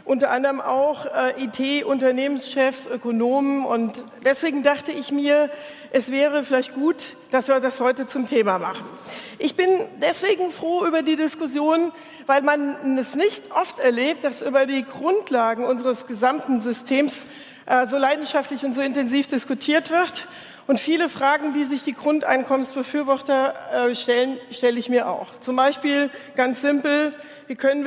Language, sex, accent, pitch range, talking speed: German, female, German, 250-285 Hz, 150 wpm